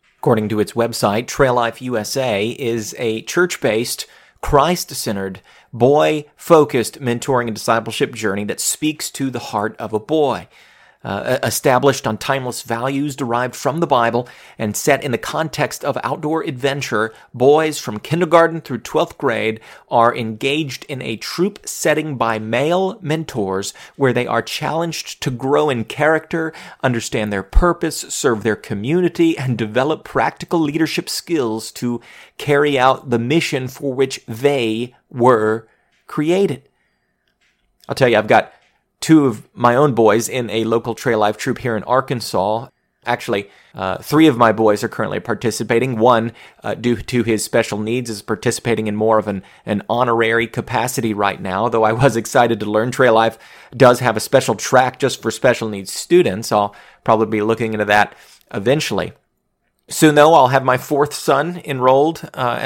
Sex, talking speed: male, 160 wpm